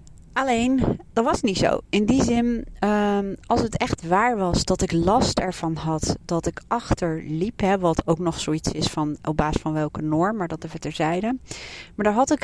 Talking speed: 205 wpm